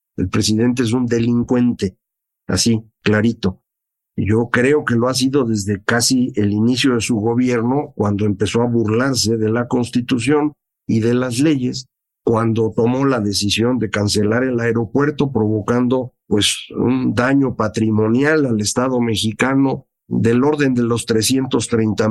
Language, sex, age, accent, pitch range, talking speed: Spanish, male, 50-69, Mexican, 110-135 Hz, 140 wpm